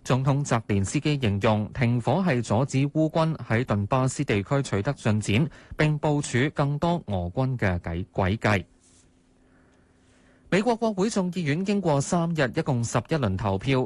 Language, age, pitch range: Chinese, 20-39, 105-145 Hz